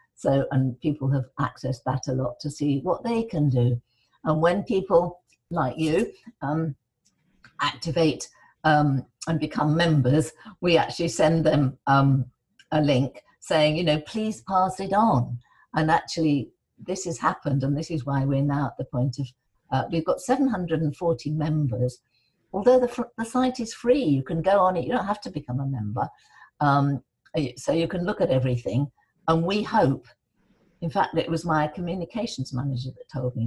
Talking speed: 175 wpm